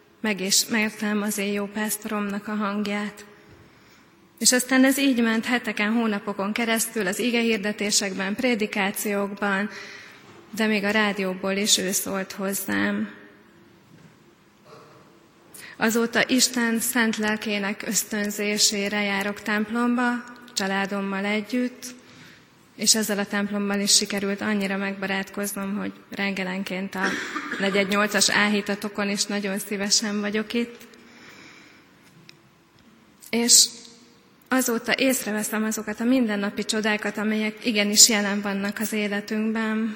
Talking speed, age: 100 wpm, 20-39